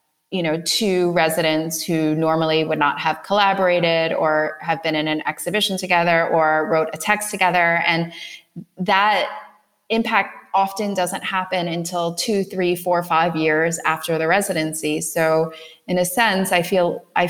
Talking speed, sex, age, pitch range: 155 wpm, female, 20-39, 165-205 Hz